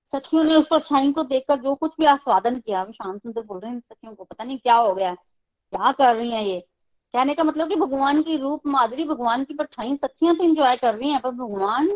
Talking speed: 240 wpm